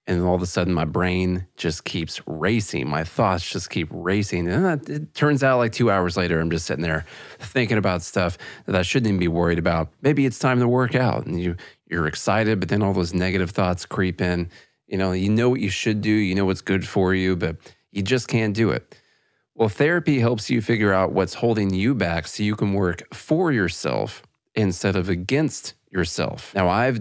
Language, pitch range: English, 90-115 Hz